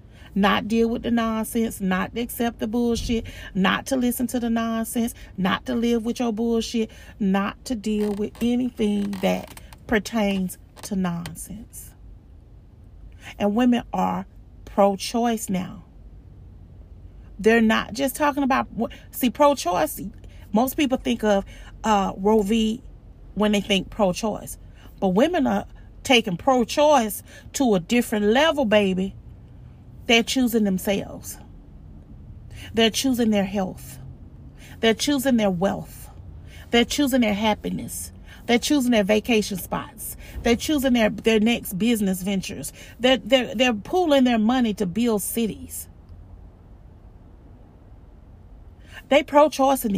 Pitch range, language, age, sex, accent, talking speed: 180-240 Hz, English, 40-59, female, American, 120 wpm